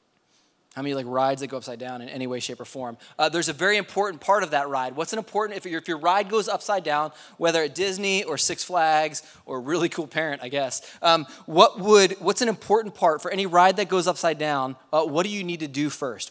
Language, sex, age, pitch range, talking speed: English, male, 20-39, 140-185 Hz, 255 wpm